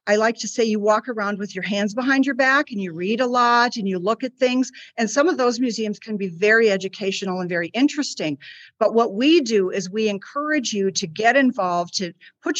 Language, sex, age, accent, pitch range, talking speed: English, female, 50-69, American, 190-245 Hz, 230 wpm